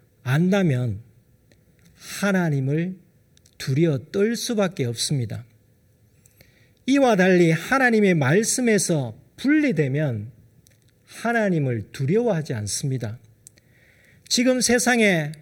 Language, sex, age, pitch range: Korean, male, 40-59, 125-200 Hz